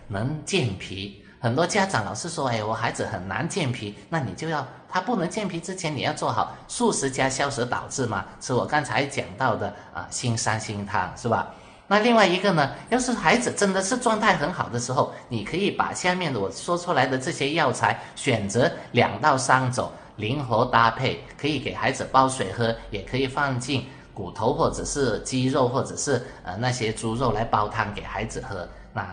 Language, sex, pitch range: Chinese, male, 115-145 Hz